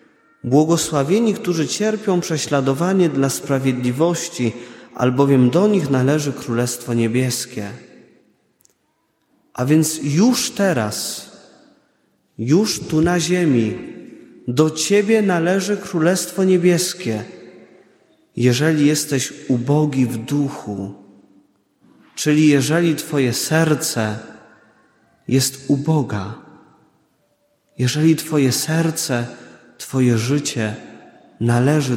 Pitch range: 125-170 Hz